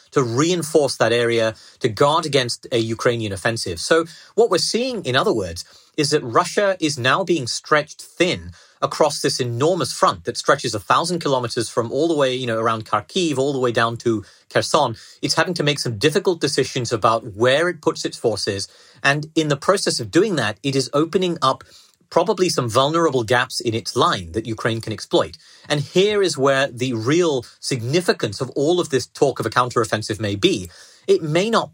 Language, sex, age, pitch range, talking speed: English, male, 30-49, 115-155 Hz, 195 wpm